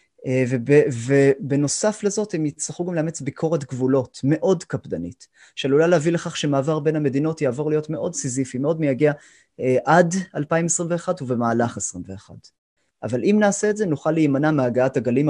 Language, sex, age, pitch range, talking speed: Hebrew, male, 30-49, 130-170 Hz, 135 wpm